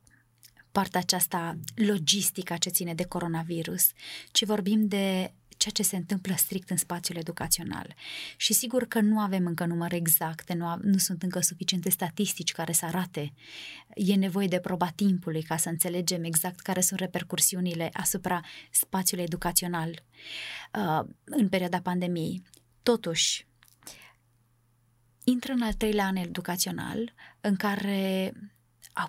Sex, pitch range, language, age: female, 165-200 Hz, Romanian, 20-39